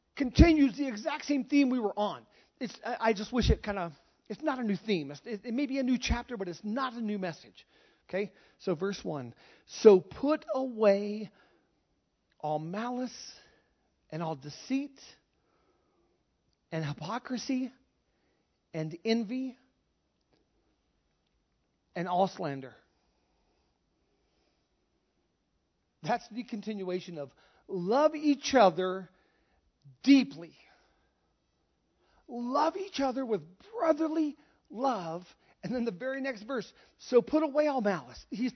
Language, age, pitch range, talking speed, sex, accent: English, 40-59, 175-255 Hz, 125 wpm, male, American